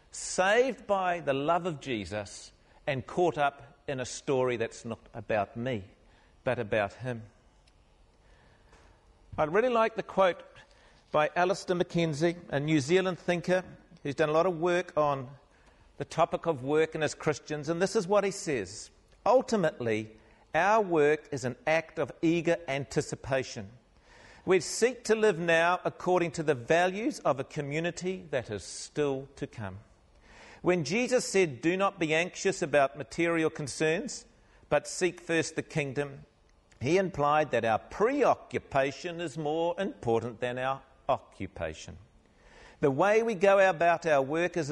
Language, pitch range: English, 125-175 Hz